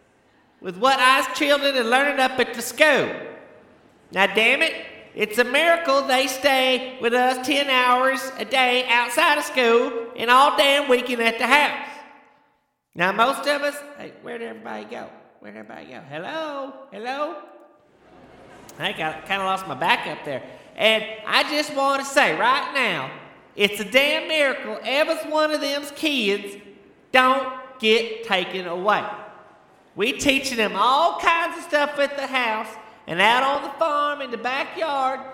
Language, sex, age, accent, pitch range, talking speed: English, male, 40-59, American, 225-285 Hz, 160 wpm